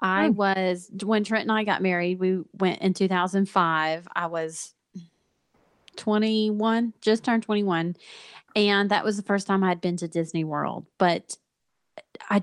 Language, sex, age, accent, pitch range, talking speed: English, female, 30-49, American, 180-215 Hz, 150 wpm